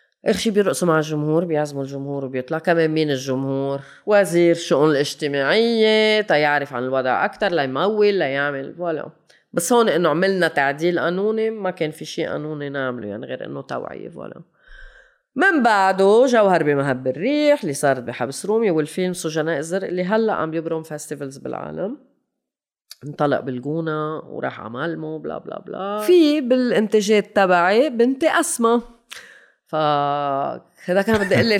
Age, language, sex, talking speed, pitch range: 30-49, Arabic, female, 145 wpm, 160-235 Hz